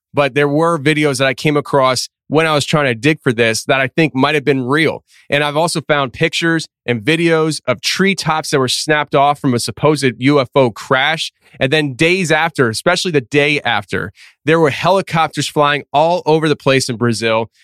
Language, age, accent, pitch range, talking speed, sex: English, 30-49, American, 135-160 Hz, 200 wpm, male